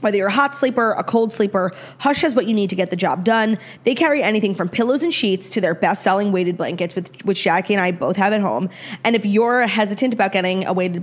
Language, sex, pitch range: English, female, 180-225 Hz